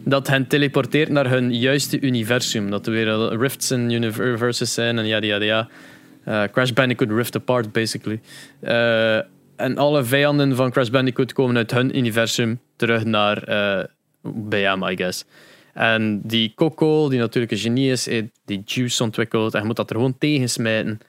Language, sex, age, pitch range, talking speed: Dutch, male, 20-39, 110-150 Hz, 165 wpm